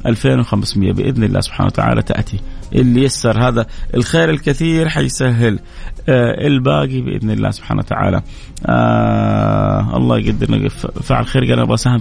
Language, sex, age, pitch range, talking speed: Arabic, male, 30-49, 110-145 Hz, 125 wpm